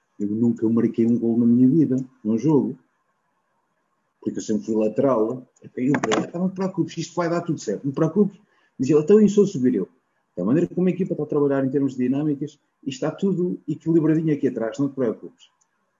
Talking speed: 215 wpm